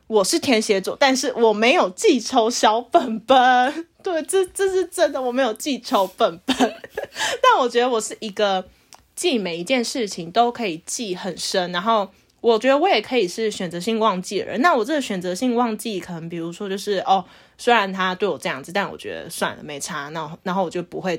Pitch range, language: 190-270 Hz, Chinese